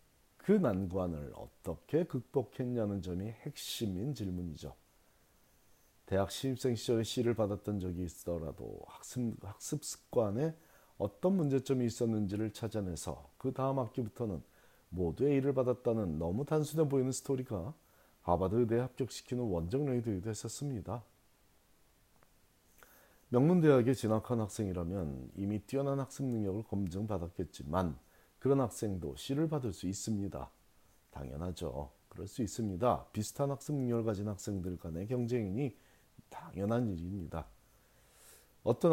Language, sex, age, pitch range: Korean, male, 40-59, 95-130 Hz